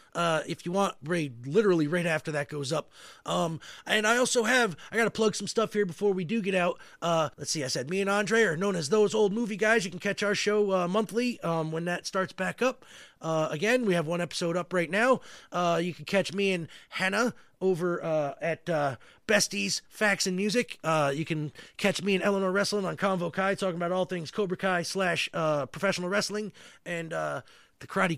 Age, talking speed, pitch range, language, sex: 30-49, 220 wpm, 165-215 Hz, English, male